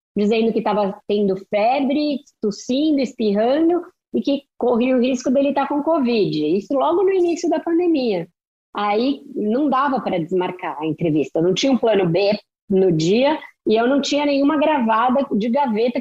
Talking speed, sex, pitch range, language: 170 wpm, female, 200-275 Hz, Portuguese